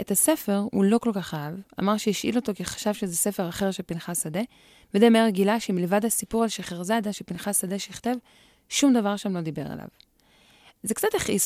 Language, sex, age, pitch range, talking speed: Hebrew, female, 20-39, 175-220 Hz, 190 wpm